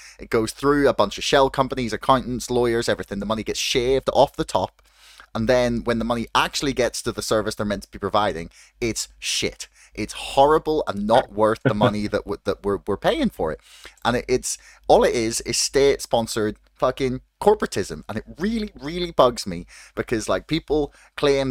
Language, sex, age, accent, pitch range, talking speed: English, male, 20-39, British, 105-140 Hz, 185 wpm